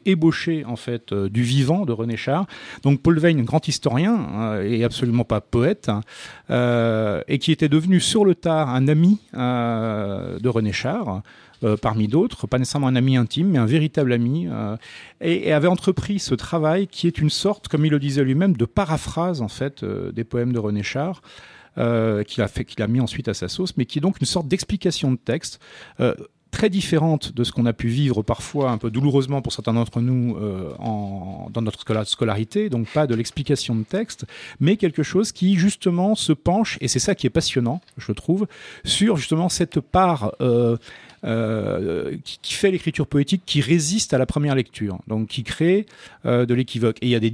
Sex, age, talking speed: male, 40-59, 205 wpm